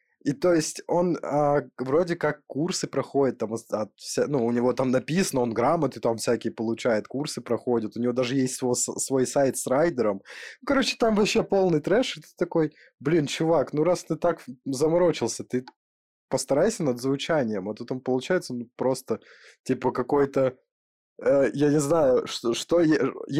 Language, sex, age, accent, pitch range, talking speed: Russian, male, 20-39, native, 115-150 Hz, 170 wpm